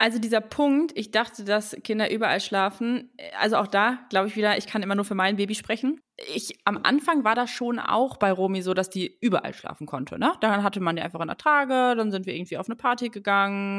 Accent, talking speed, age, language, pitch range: German, 240 wpm, 20-39, German, 190-235 Hz